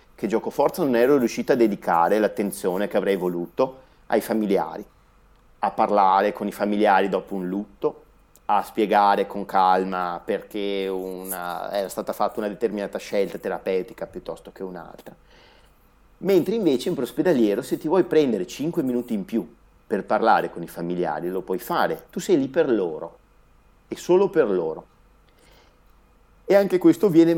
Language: Italian